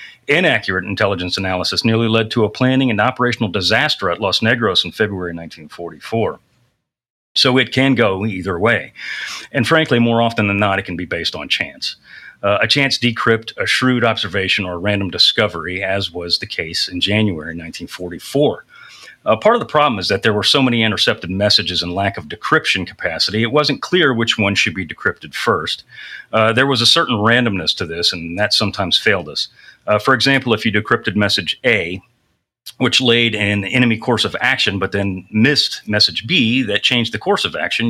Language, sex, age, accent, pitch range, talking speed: English, male, 40-59, American, 95-120 Hz, 190 wpm